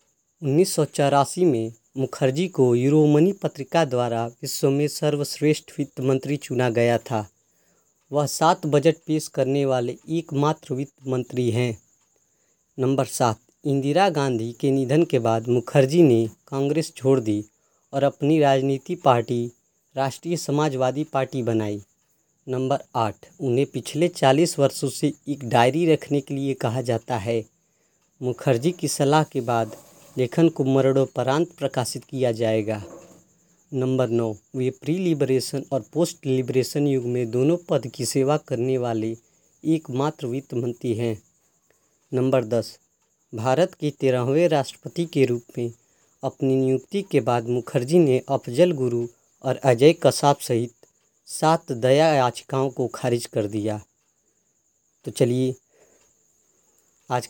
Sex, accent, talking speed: female, native, 130 wpm